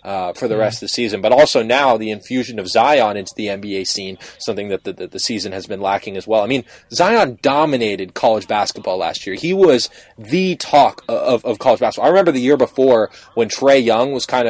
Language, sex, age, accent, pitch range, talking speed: English, male, 20-39, American, 110-130 Hz, 230 wpm